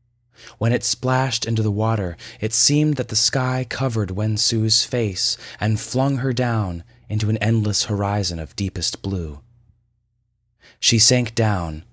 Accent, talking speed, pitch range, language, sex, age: American, 145 wpm, 100-120 Hz, English, male, 20-39